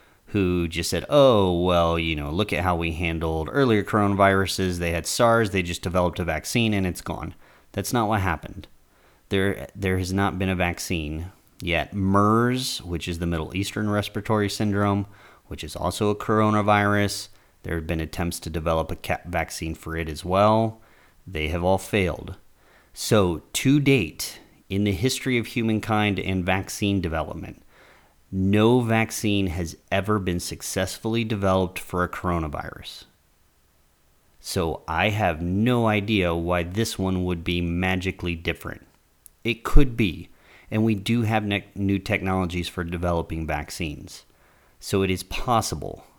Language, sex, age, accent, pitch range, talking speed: English, male, 30-49, American, 85-105 Hz, 150 wpm